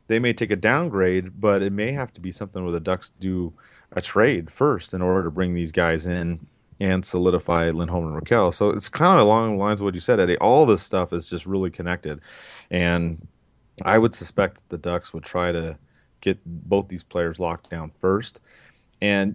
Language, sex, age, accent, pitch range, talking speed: English, male, 30-49, American, 90-110 Hz, 210 wpm